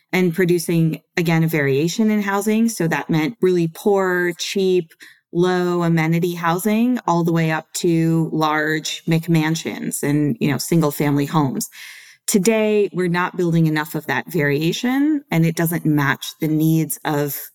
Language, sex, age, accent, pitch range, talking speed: English, female, 20-39, American, 155-190 Hz, 145 wpm